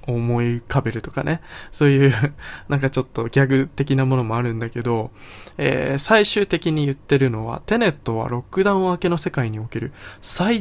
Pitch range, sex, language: 120-145 Hz, male, Japanese